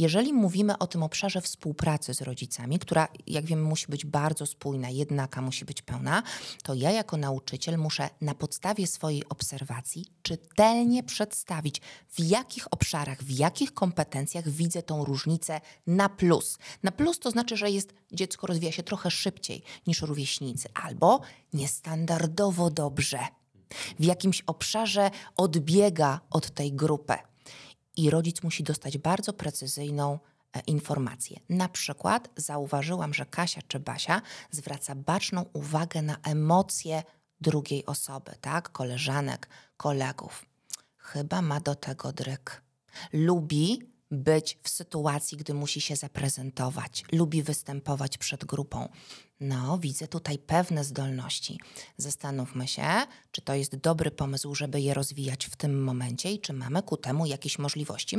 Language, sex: Polish, female